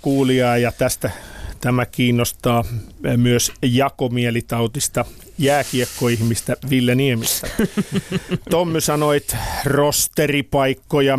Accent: native